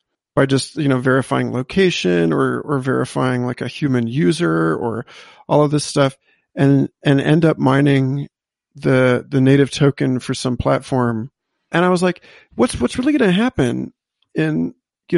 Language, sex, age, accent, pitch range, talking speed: English, male, 40-59, American, 125-155 Hz, 165 wpm